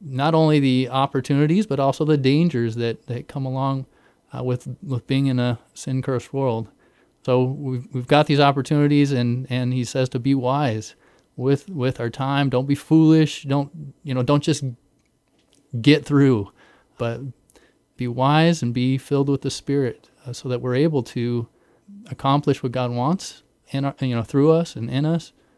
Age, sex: 30-49, male